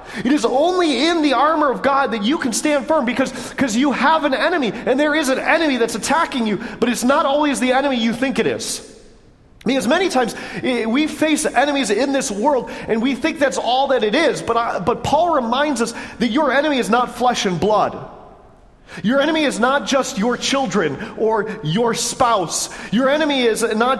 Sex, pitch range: male, 205-265 Hz